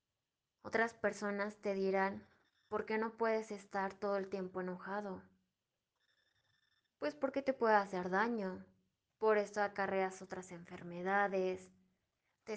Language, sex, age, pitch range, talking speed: Spanish, female, 20-39, 190-220 Hz, 120 wpm